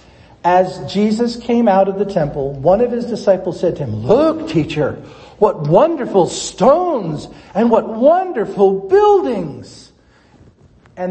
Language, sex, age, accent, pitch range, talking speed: English, male, 50-69, American, 140-195 Hz, 130 wpm